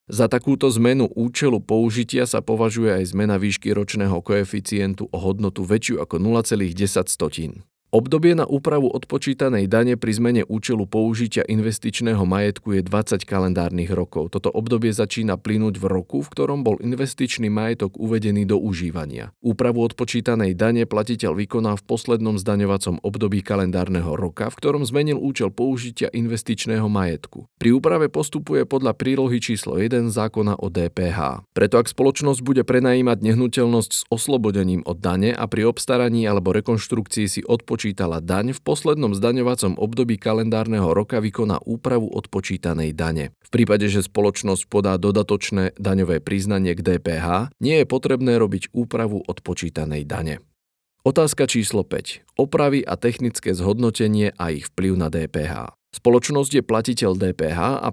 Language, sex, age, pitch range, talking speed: Slovak, male, 40-59, 95-120 Hz, 140 wpm